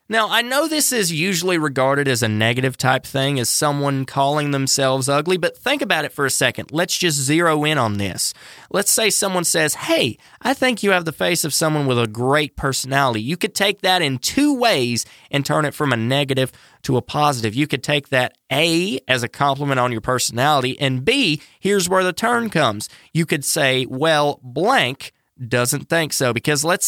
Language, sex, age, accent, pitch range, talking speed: English, male, 20-39, American, 130-180 Hz, 205 wpm